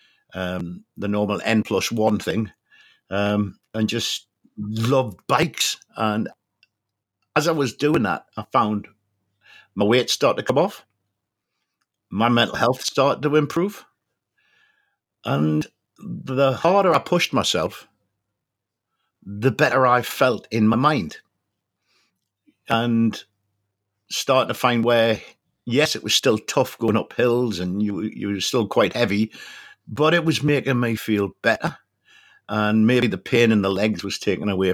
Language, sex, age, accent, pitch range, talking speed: English, male, 50-69, British, 105-130 Hz, 140 wpm